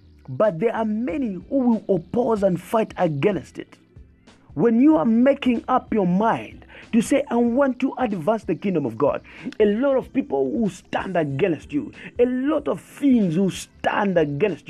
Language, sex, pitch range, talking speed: English, male, 175-250 Hz, 175 wpm